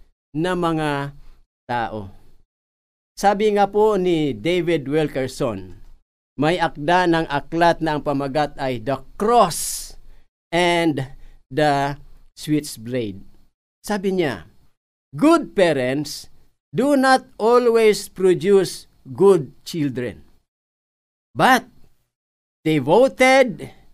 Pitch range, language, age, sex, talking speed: 130-210 Hz, Filipino, 50-69, male, 85 wpm